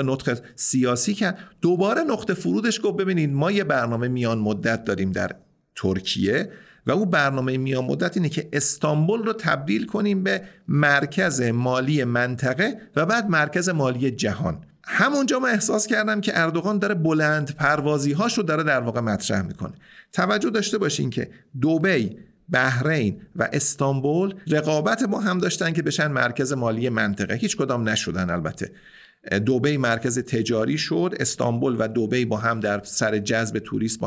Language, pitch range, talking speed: Persian, 110-165 Hz, 150 wpm